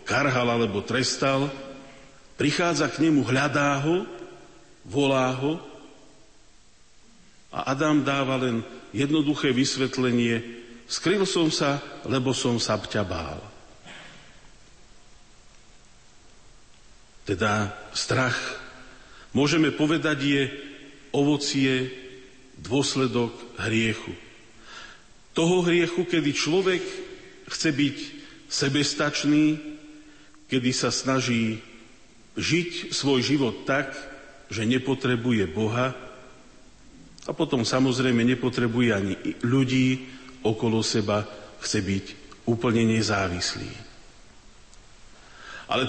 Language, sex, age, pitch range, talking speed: Slovak, male, 50-69, 120-145 Hz, 80 wpm